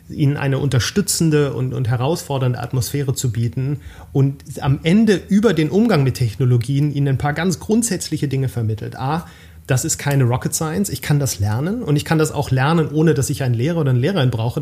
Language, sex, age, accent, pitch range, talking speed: German, male, 30-49, German, 125-160 Hz, 195 wpm